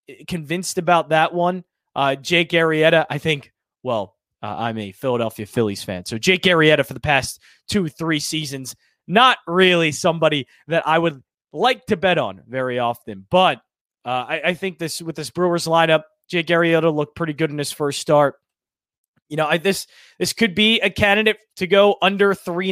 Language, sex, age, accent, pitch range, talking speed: English, male, 20-39, American, 130-175 Hz, 180 wpm